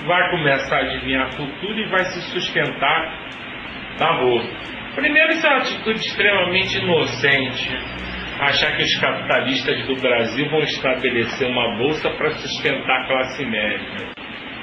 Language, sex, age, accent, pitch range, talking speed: Portuguese, male, 40-59, Brazilian, 145-205 Hz, 140 wpm